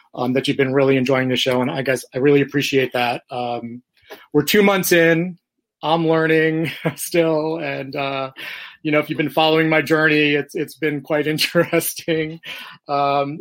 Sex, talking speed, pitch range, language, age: male, 175 wpm, 125-160 Hz, English, 30-49